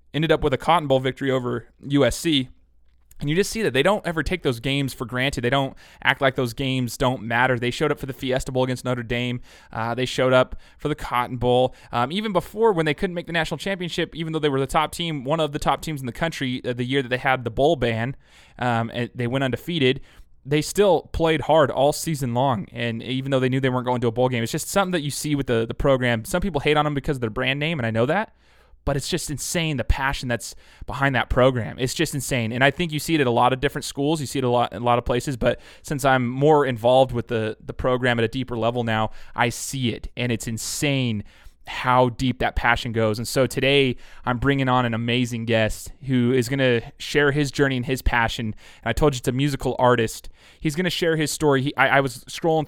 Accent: American